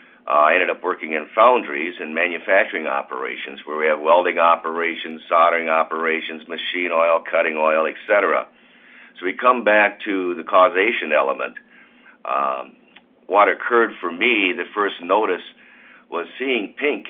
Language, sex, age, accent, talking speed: English, male, 50-69, American, 145 wpm